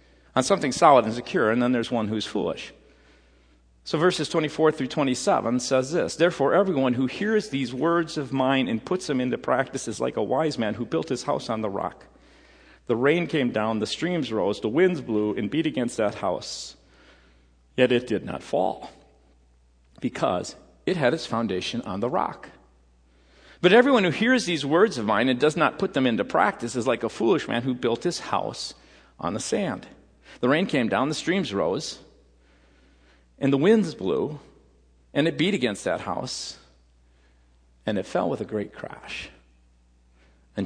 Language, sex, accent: English, male, American